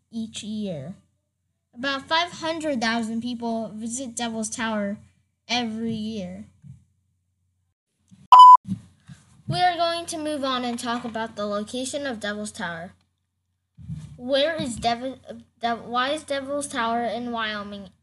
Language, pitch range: English, 185-260 Hz